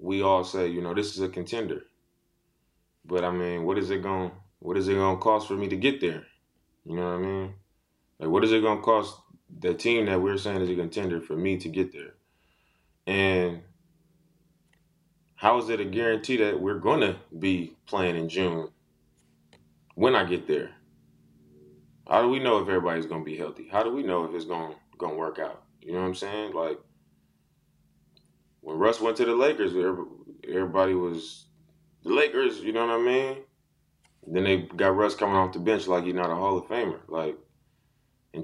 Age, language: 20-39, English